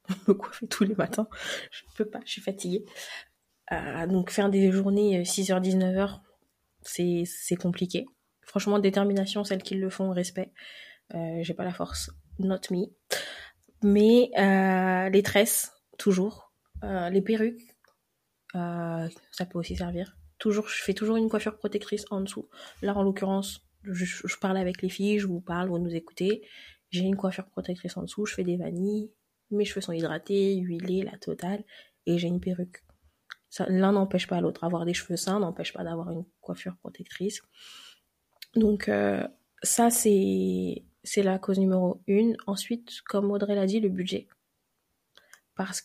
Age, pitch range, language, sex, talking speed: 20-39, 180-210 Hz, French, female, 160 wpm